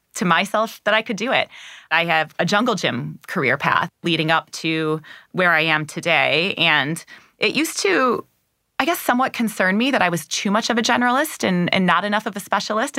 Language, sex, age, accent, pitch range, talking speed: English, female, 20-39, American, 160-210 Hz, 210 wpm